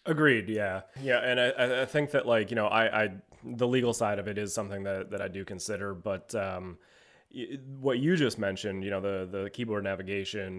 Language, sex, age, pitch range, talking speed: English, male, 20-39, 95-120 Hz, 210 wpm